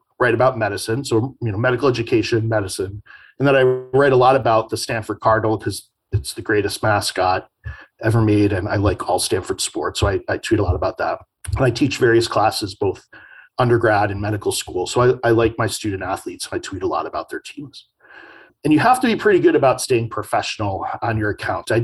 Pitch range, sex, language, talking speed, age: 110-145 Hz, male, English, 215 wpm, 40-59